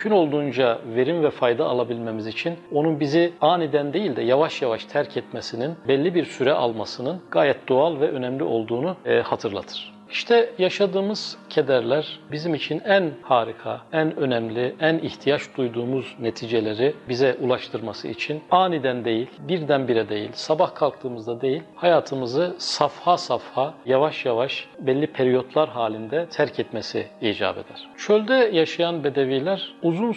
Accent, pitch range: native, 125-170 Hz